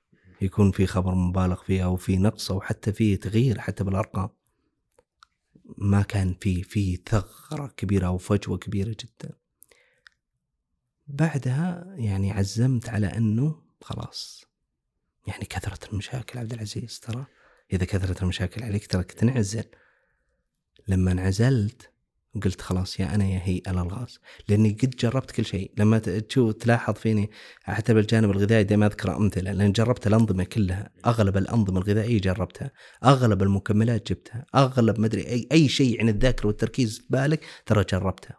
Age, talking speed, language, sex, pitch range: 30-49, 140 wpm, Arabic, male, 95-120 Hz